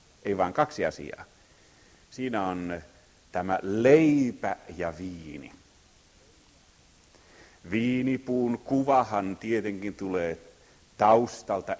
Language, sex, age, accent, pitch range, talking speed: Finnish, male, 50-69, native, 90-120 Hz, 75 wpm